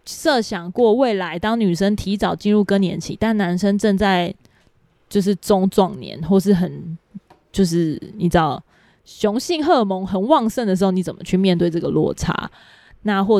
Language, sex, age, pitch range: Chinese, female, 20-39, 170-200 Hz